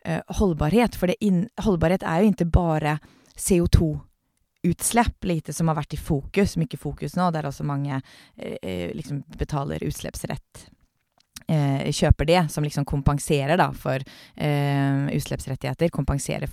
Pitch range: 140-175 Hz